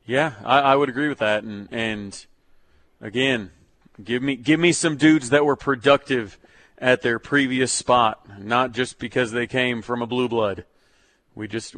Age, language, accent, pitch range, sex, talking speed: 40-59, English, American, 110-135 Hz, male, 175 wpm